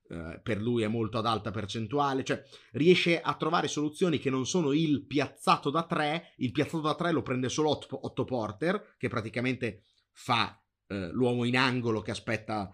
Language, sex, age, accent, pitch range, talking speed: Italian, male, 30-49, native, 105-135 Hz, 180 wpm